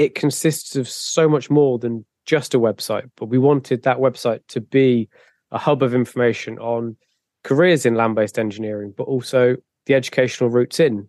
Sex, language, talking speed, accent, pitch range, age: male, English, 175 wpm, British, 120-145 Hz, 20-39